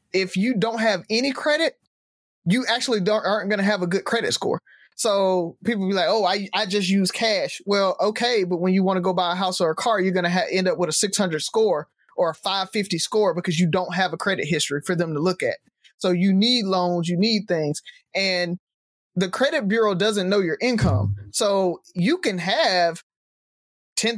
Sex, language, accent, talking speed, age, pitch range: male, English, American, 215 wpm, 20-39, 185-220 Hz